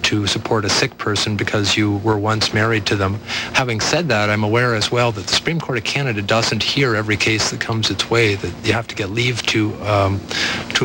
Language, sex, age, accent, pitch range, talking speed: English, male, 50-69, American, 105-115 Hz, 230 wpm